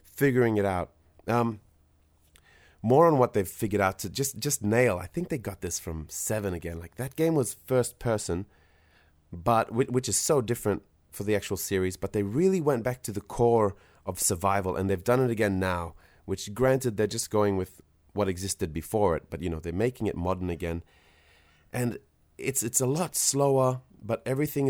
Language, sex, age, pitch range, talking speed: English, male, 30-49, 90-120 Hz, 190 wpm